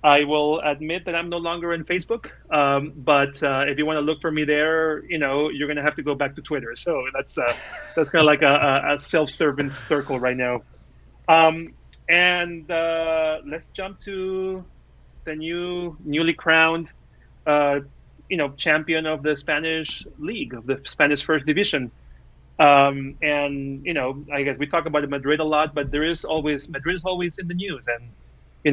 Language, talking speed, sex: English, 190 wpm, male